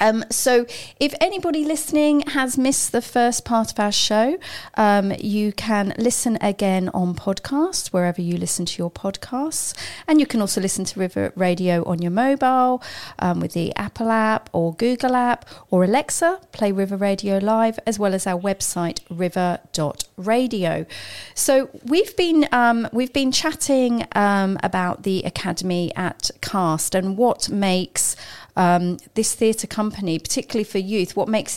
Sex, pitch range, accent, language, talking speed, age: female, 185-245 Hz, British, English, 155 wpm, 40-59